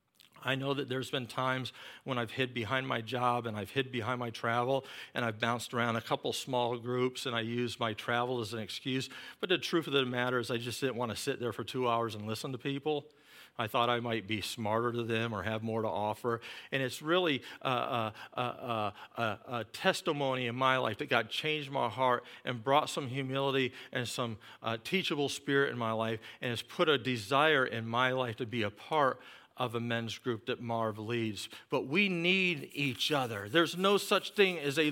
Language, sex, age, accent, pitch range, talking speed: English, male, 50-69, American, 120-200 Hz, 220 wpm